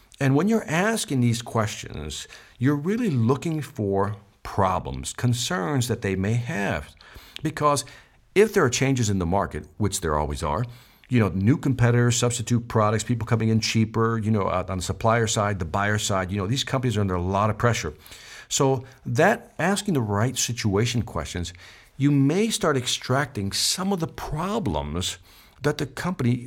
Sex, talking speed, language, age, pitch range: male, 170 wpm, English, 50-69, 95-130 Hz